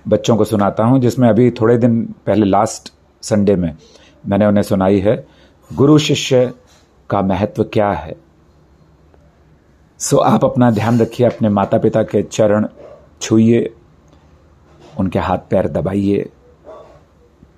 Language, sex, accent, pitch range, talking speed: Hindi, male, native, 80-110 Hz, 125 wpm